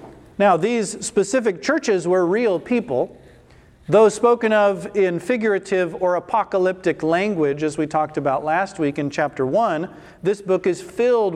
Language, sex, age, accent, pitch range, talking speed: English, male, 40-59, American, 165-215 Hz, 150 wpm